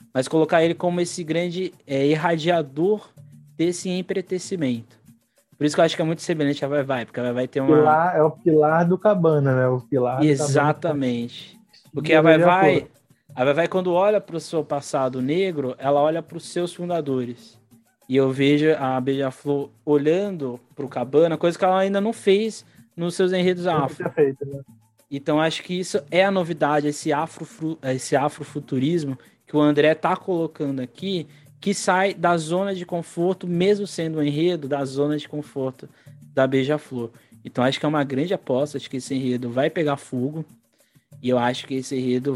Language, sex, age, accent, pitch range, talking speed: Portuguese, male, 20-39, Brazilian, 130-165 Hz, 180 wpm